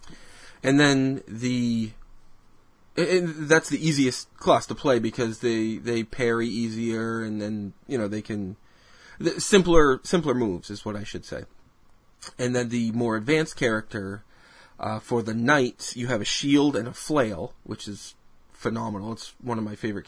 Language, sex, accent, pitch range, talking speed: English, male, American, 110-130 Hz, 160 wpm